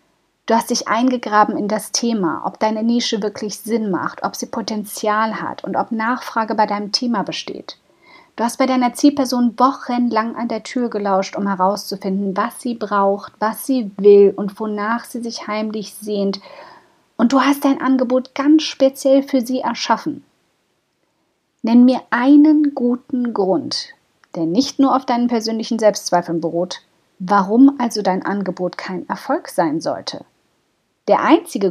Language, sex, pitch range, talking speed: German, female, 200-260 Hz, 155 wpm